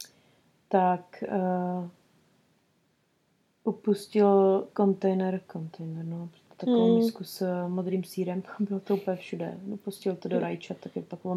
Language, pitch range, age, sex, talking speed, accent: Czech, 180-220 Hz, 30-49, female, 115 wpm, native